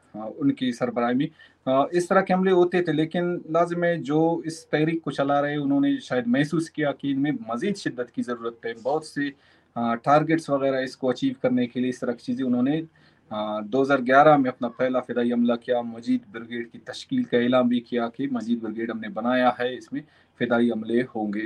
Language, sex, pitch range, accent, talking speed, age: Hindi, male, 125-160 Hz, native, 195 wpm, 30-49